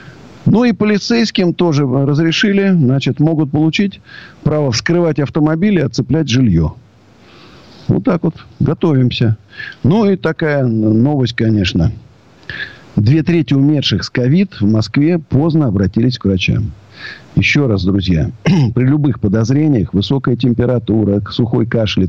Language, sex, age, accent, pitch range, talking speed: Russian, male, 50-69, native, 105-150 Hz, 120 wpm